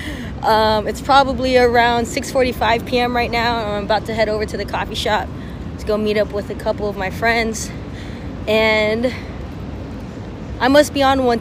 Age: 20-39